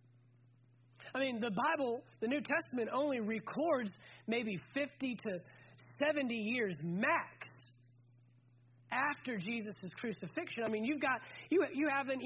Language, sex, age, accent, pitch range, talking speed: English, male, 30-49, American, 215-285 Hz, 120 wpm